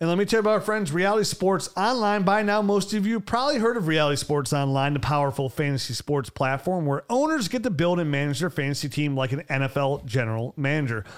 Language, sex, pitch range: English, male, 145-215 Hz